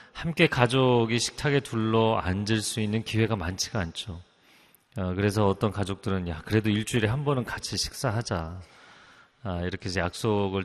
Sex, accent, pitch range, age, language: male, native, 95-125 Hz, 30-49, Korean